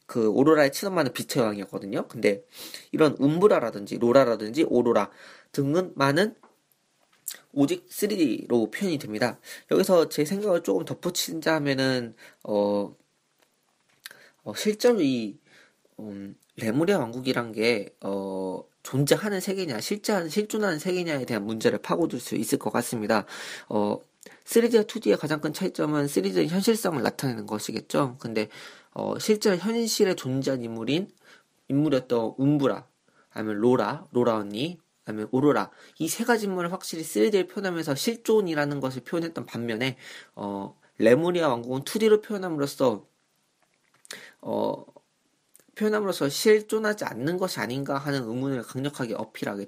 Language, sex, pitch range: Korean, male, 120-190 Hz